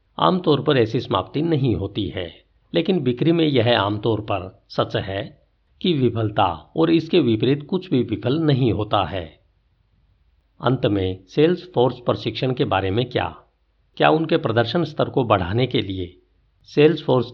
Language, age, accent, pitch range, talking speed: Hindi, 50-69, native, 105-150 Hz, 165 wpm